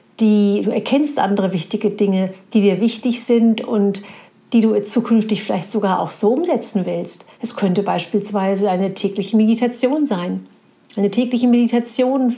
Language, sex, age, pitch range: German, female, 50-69, 200-230 Hz